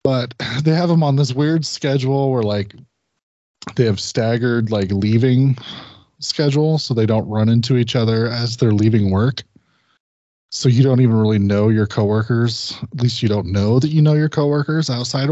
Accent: American